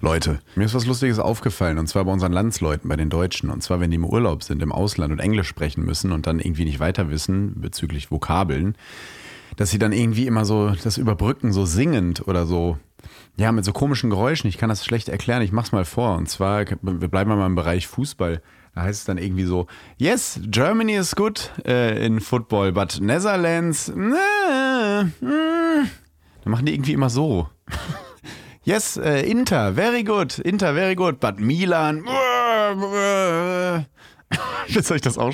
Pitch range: 95-145 Hz